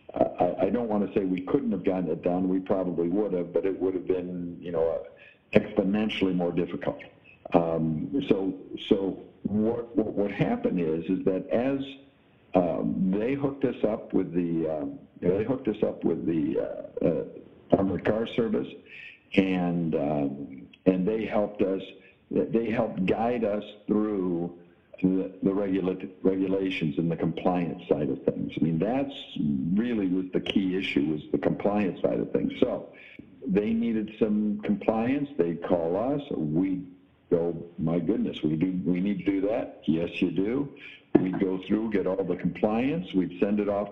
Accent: American